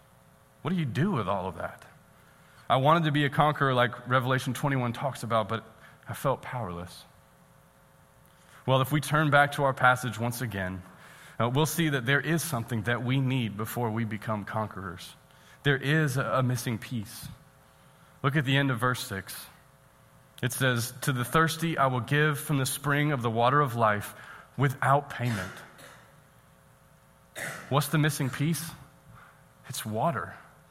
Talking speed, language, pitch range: 160 wpm, English, 120-150 Hz